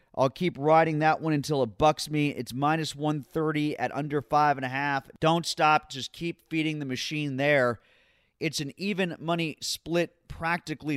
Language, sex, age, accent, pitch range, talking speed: English, male, 30-49, American, 135-170 Hz, 175 wpm